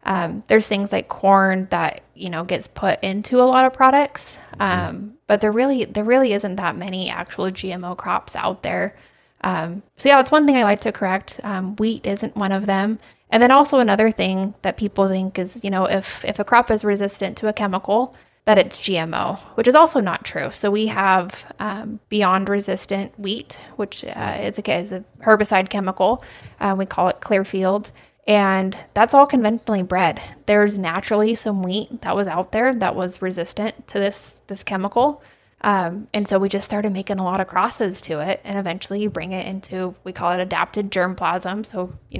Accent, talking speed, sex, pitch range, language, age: American, 200 wpm, female, 185-215 Hz, English, 20-39